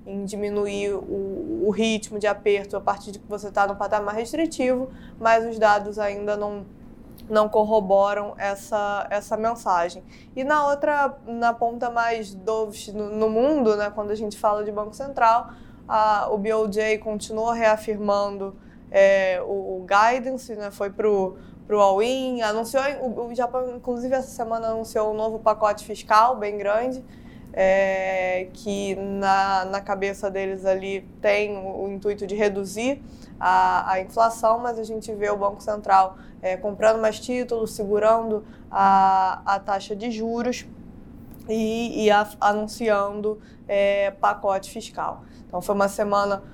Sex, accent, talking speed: female, Brazilian, 150 wpm